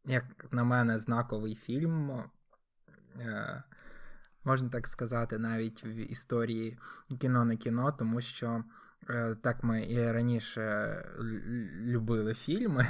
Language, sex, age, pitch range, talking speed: Ukrainian, male, 20-39, 115-125 Hz, 100 wpm